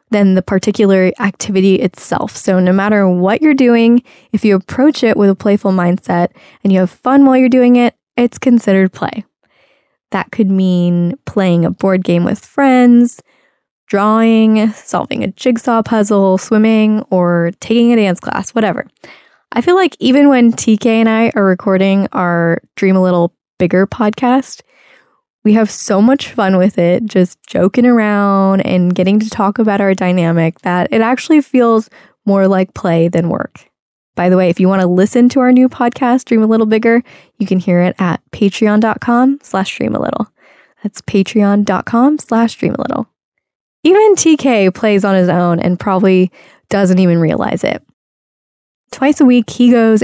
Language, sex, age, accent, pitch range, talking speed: English, female, 10-29, American, 190-240 Hz, 165 wpm